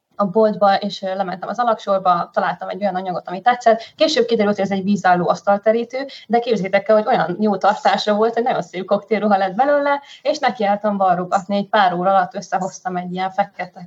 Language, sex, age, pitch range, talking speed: Hungarian, female, 20-39, 190-220 Hz, 190 wpm